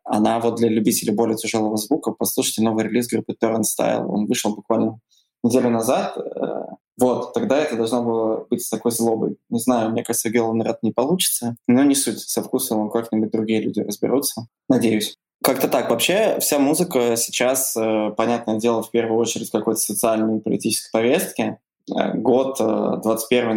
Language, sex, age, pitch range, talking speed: Russian, male, 20-39, 110-120 Hz, 165 wpm